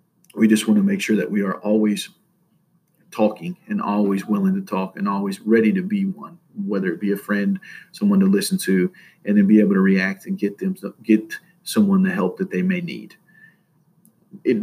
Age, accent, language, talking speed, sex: 40-59, American, English, 200 wpm, male